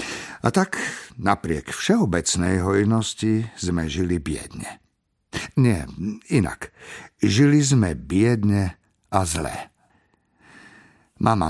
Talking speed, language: 85 wpm, Slovak